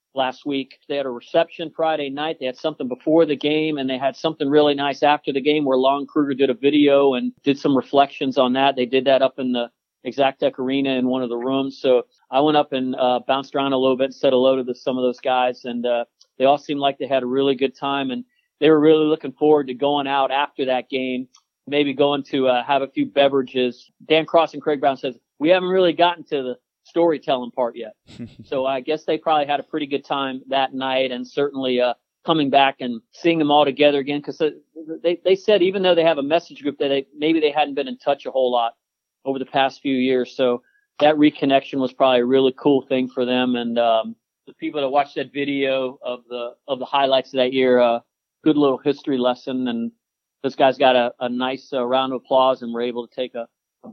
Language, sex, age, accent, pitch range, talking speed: English, male, 40-59, American, 125-150 Hz, 240 wpm